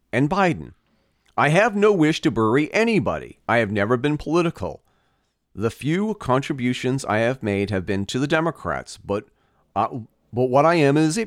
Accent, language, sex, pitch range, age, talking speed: American, English, male, 100-145 Hz, 40-59, 175 wpm